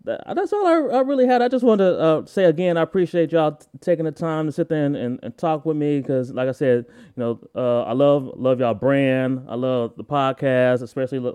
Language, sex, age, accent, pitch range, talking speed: English, male, 20-39, American, 120-145 Hz, 245 wpm